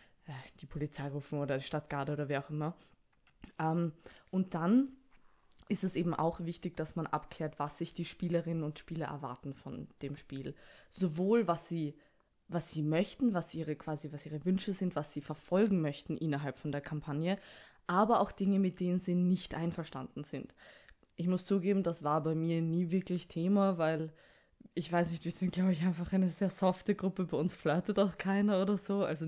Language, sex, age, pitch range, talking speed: German, female, 20-39, 155-185 Hz, 180 wpm